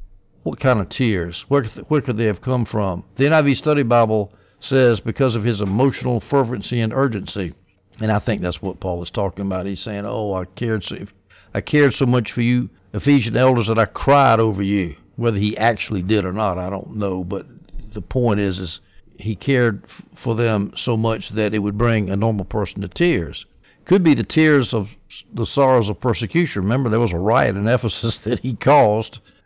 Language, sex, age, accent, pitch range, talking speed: English, male, 60-79, American, 105-130 Hz, 200 wpm